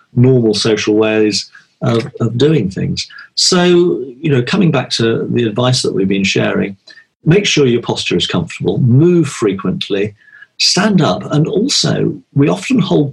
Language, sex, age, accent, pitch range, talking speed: English, male, 50-69, British, 110-165 Hz, 155 wpm